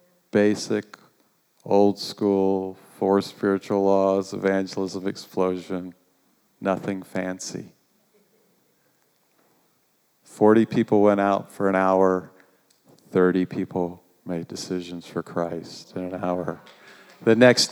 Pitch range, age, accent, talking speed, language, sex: 100-125 Hz, 50-69, American, 90 wpm, English, male